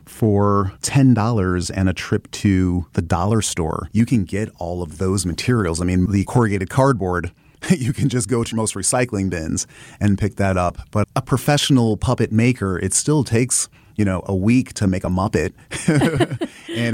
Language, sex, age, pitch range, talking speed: English, male, 30-49, 100-120 Hz, 175 wpm